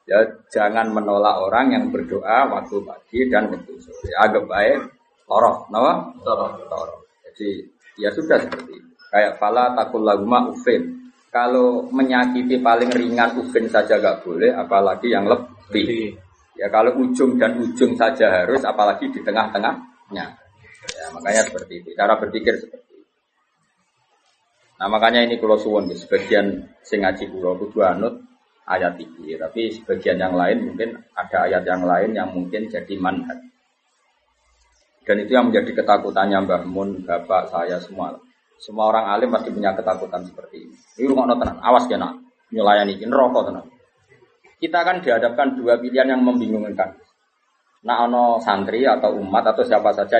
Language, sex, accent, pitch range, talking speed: Indonesian, male, native, 105-165 Hz, 140 wpm